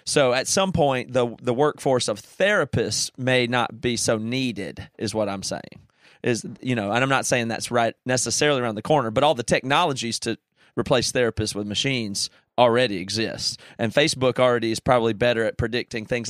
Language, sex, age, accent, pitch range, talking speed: English, male, 30-49, American, 115-145 Hz, 190 wpm